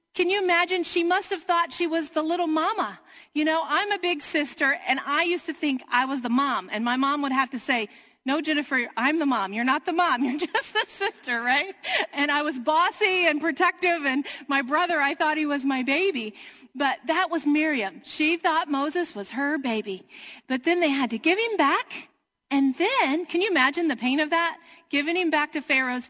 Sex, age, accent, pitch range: female, 40-59, American, 270-365 Hz